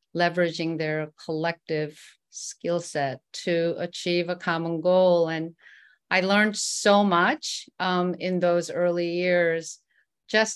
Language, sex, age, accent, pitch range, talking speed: English, female, 40-59, American, 160-195 Hz, 120 wpm